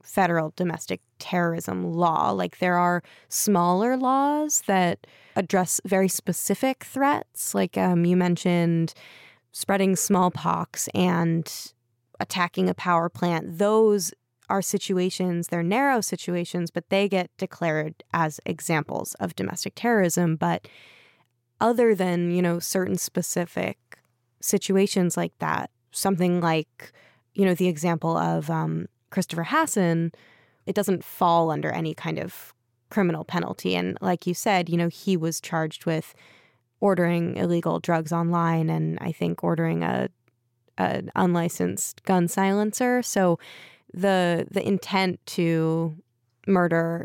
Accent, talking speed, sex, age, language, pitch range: American, 125 wpm, female, 20-39, English, 155-190 Hz